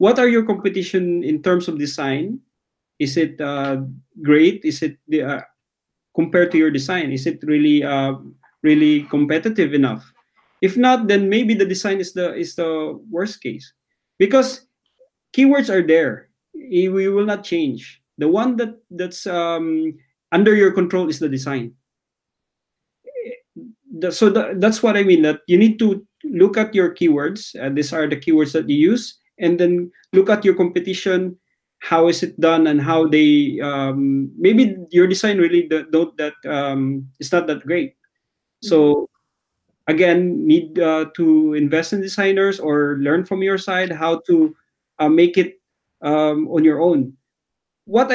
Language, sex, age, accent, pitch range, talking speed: English, male, 20-39, Filipino, 155-205 Hz, 160 wpm